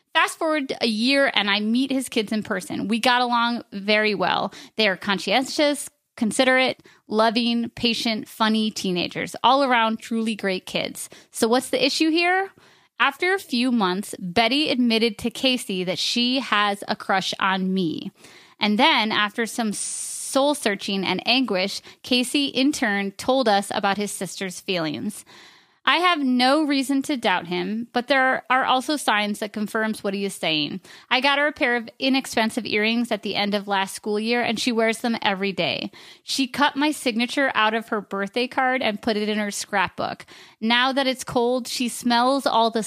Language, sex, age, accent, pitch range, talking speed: English, female, 30-49, American, 205-260 Hz, 180 wpm